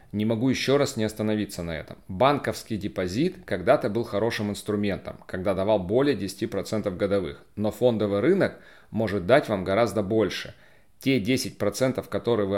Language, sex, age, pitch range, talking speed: Russian, male, 40-59, 95-115 Hz, 150 wpm